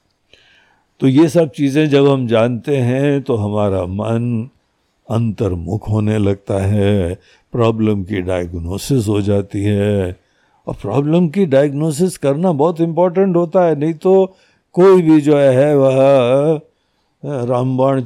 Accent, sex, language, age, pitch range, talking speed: native, male, Hindi, 60-79, 100-150 Hz, 125 wpm